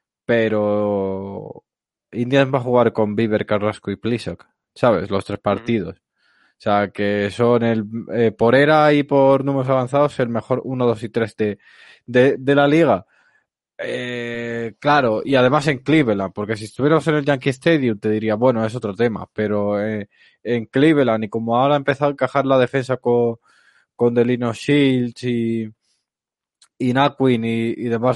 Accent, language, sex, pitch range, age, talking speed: Spanish, Spanish, male, 110-130 Hz, 20-39, 160 wpm